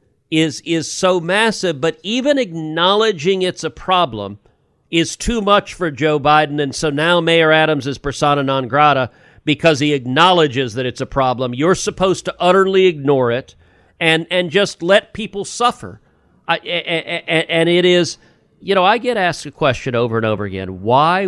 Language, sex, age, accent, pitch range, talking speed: English, male, 50-69, American, 115-160 Hz, 170 wpm